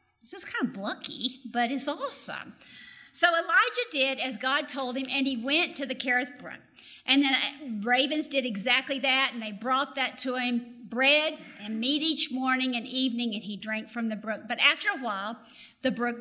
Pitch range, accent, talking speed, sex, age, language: 230-280 Hz, American, 195 wpm, female, 50-69, English